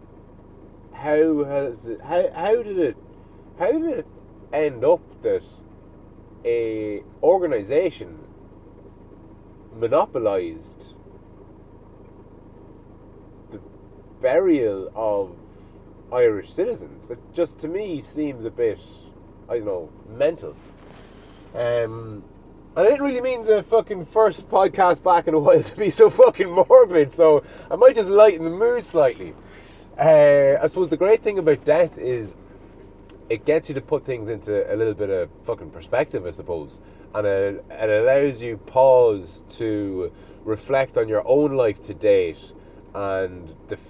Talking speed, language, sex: 135 wpm, English, male